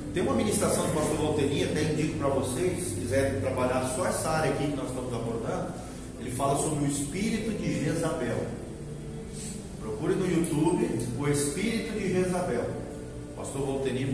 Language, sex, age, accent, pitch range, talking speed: Portuguese, male, 40-59, Brazilian, 130-170 Hz, 155 wpm